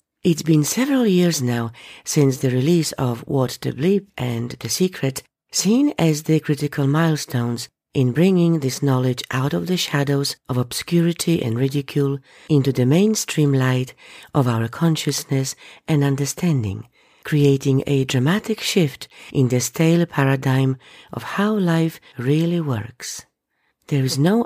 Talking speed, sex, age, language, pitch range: 140 wpm, female, 50-69, English, 130-165 Hz